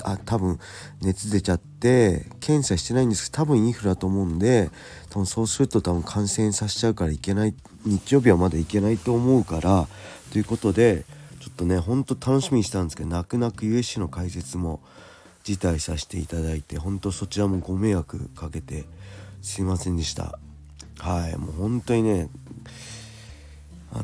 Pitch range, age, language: 85-105 Hz, 40-59, Japanese